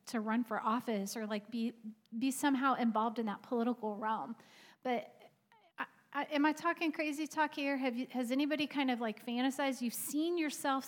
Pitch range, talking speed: 225-275 Hz, 190 wpm